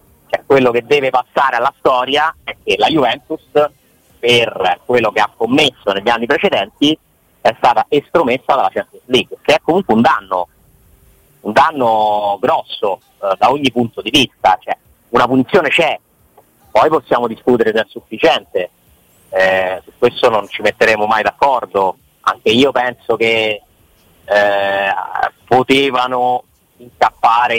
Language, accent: Italian, native